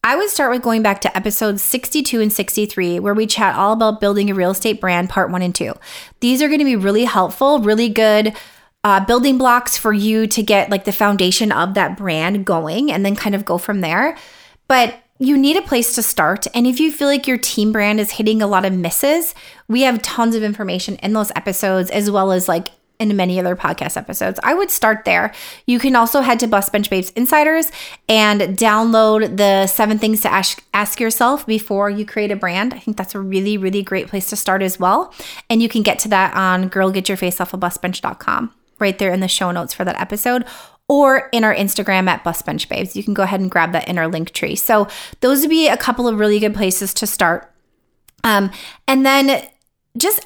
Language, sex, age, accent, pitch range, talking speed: English, female, 30-49, American, 190-240 Hz, 225 wpm